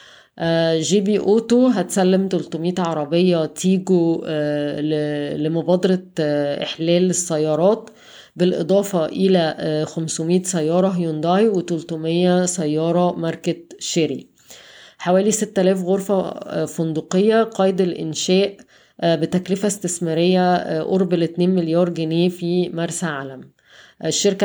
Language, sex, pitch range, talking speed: Arabic, female, 165-185 Hz, 85 wpm